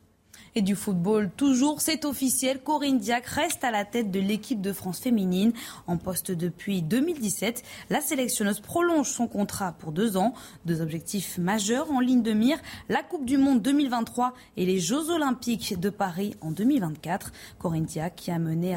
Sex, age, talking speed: female, 20-39, 170 wpm